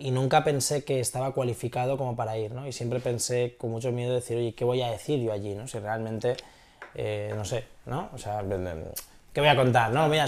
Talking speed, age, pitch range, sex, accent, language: 230 wpm, 20-39, 115-135 Hz, male, Spanish, Spanish